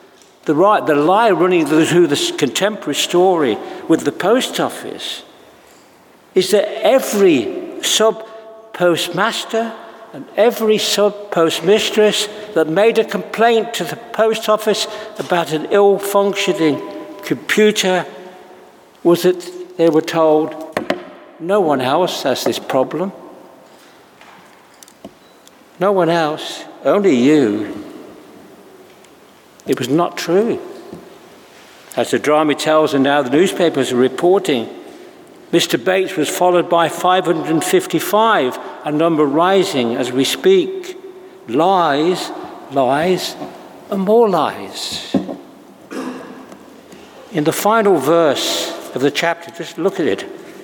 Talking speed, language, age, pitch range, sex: 105 wpm, English, 60-79, 160-215 Hz, male